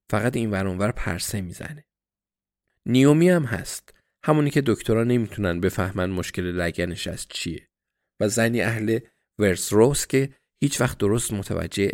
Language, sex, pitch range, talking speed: Persian, male, 95-125 Hz, 135 wpm